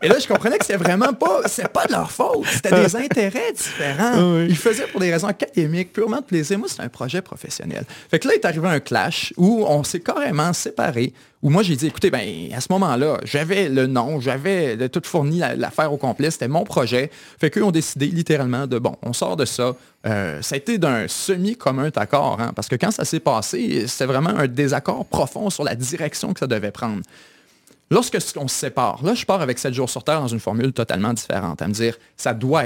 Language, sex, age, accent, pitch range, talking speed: French, male, 30-49, Canadian, 120-175 Hz, 230 wpm